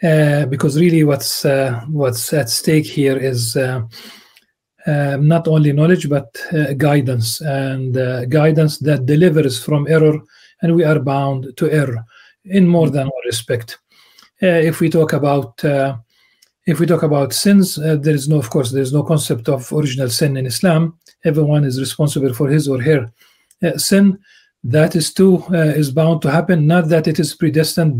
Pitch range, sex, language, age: 140-170 Hz, male, English, 40-59